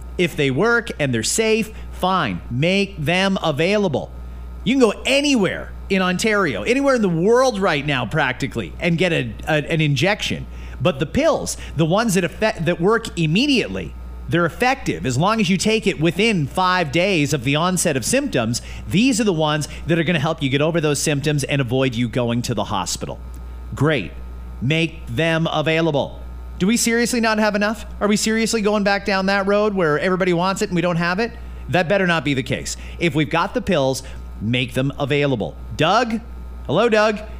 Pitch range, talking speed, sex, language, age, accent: 140-210 Hz, 185 wpm, male, English, 40-59, American